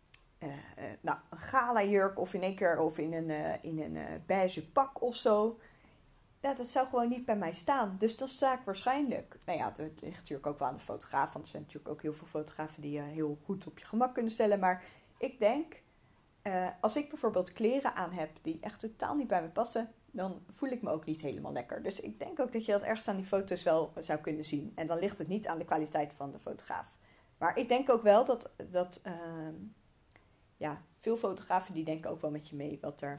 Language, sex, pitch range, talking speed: Dutch, female, 155-215 Hz, 240 wpm